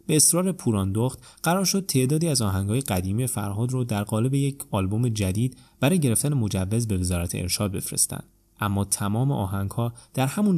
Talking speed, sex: 160 wpm, male